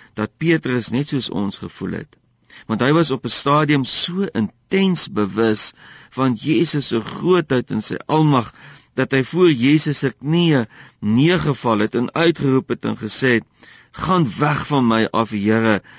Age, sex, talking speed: 50-69, male, 160 wpm